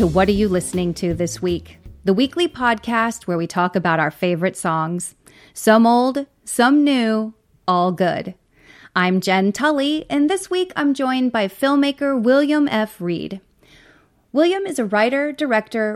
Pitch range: 185-255 Hz